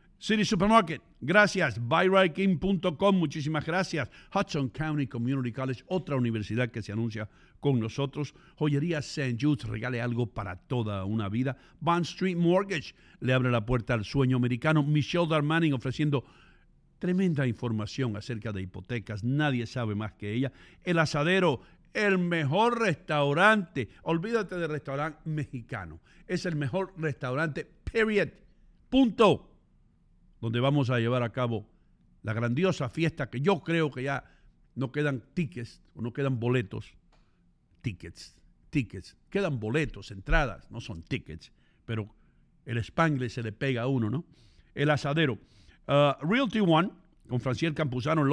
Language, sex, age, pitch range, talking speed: English, male, 60-79, 120-165 Hz, 135 wpm